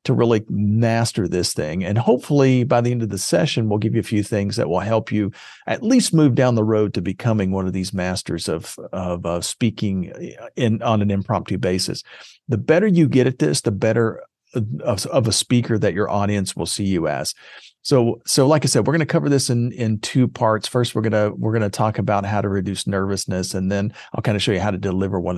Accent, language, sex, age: American, English, male, 40-59